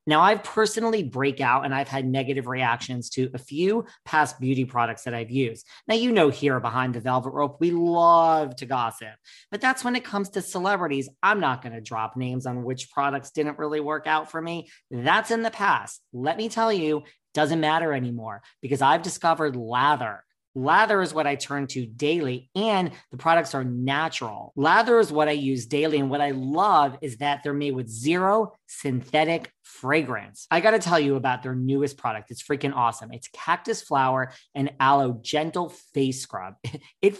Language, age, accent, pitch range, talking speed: English, 40-59, American, 130-170 Hz, 190 wpm